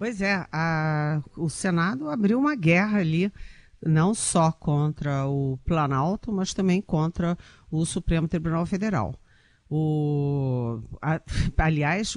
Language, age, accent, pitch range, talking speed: Portuguese, 50-69, Brazilian, 150-185 Hz, 105 wpm